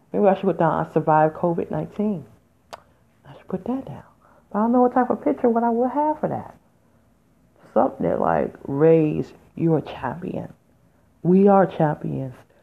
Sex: female